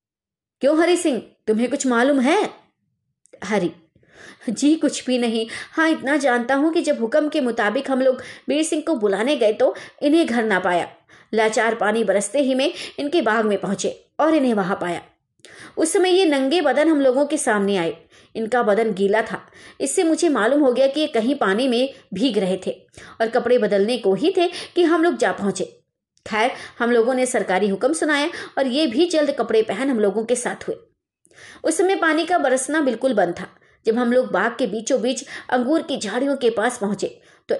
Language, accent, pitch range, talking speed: Hindi, native, 220-315 Hz, 200 wpm